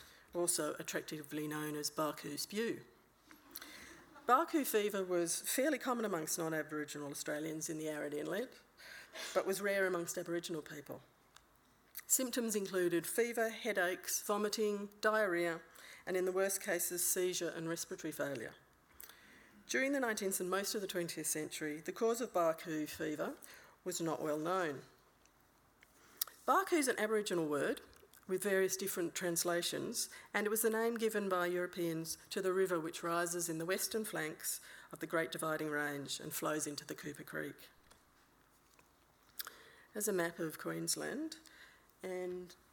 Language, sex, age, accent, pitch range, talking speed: English, female, 50-69, Australian, 160-205 Hz, 140 wpm